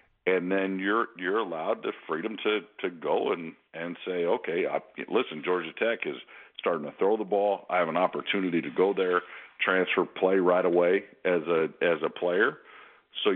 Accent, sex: American, male